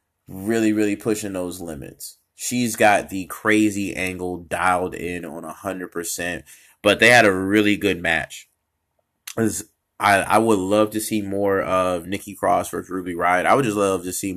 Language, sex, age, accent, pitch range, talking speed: English, male, 20-39, American, 90-105 Hz, 165 wpm